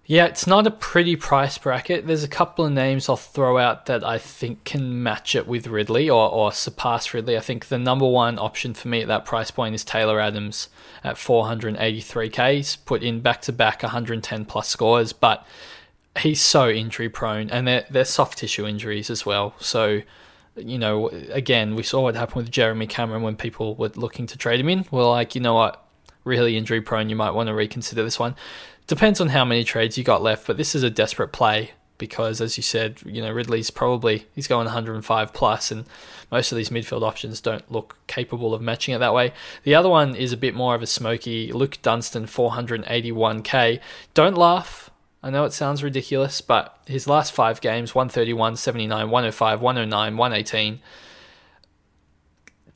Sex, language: male, English